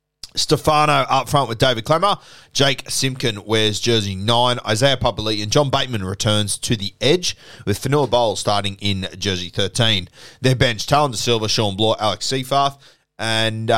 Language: English